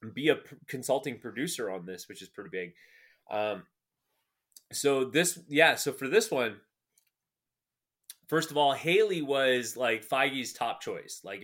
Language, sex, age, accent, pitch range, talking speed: English, male, 30-49, American, 115-150 Hz, 145 wpm